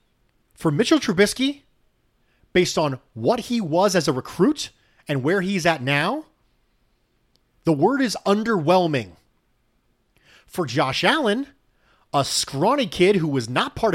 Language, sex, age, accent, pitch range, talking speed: English, male, 30-49, American, 125-205 Hz, 130 wpm